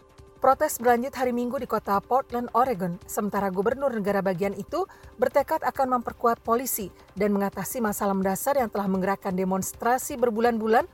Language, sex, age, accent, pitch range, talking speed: Indonesian, female, 40-59, native, 195-250 Hz, 145 wpm